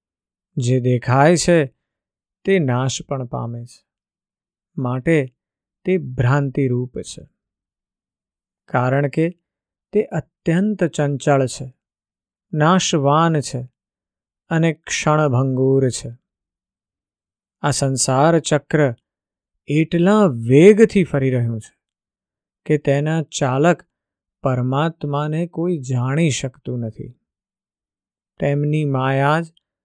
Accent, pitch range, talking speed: native, 130-165 Hz, 60 wpm